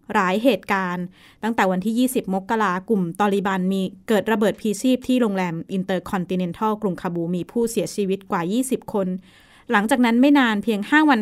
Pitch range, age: 190-230 Hz, 20-39